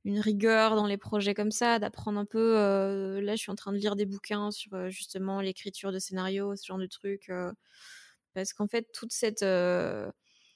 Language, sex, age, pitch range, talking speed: French, female, 20-39, 200-225 Hz, 205 wpm